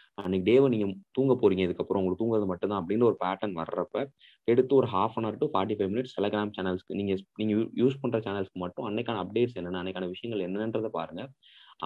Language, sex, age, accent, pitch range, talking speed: Tamil, male, 20-39, native, 95-115 Hz, 190 wpm